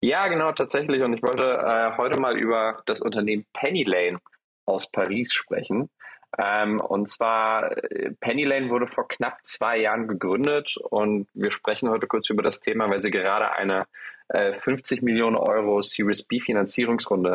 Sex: male